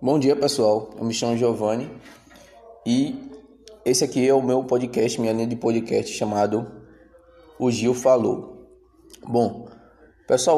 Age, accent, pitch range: 20-39, Brazilian, 115-140 Hz